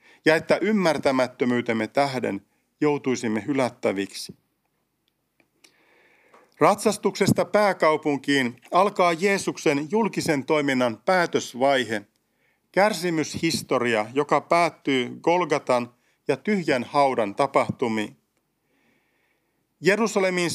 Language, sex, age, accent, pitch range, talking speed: Finnish, male, 50-69, native, 125-180 Hz, 65 wpm